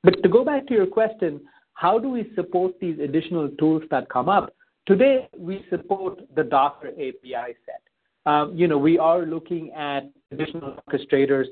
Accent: Indian